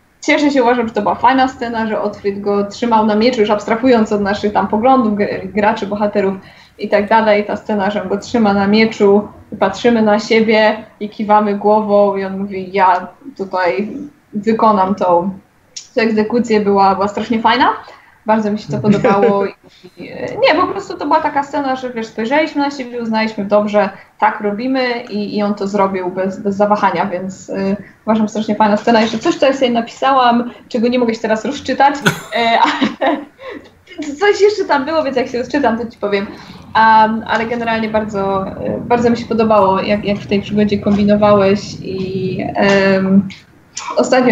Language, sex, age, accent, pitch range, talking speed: Polish, female, 20-39, native, 200-235 Hz, 175 wpm